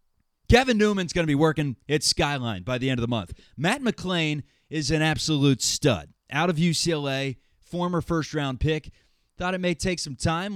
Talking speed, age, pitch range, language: 180 wpm, 20-39, 120-175 Hz, English